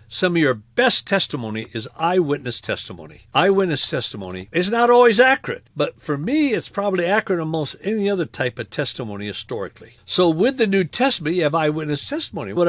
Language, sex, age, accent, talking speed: English, male, 60-79, American, 175 wpm